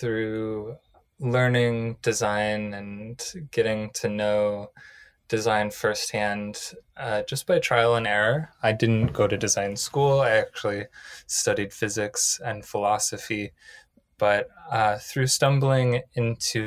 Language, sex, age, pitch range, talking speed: German, male, 20-39, 105-125 Hz, 115 wpm